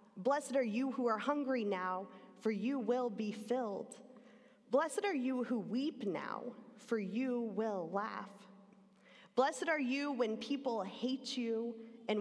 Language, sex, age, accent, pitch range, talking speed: English, female, 20-39, American, 195-245 Hz, 145 wpm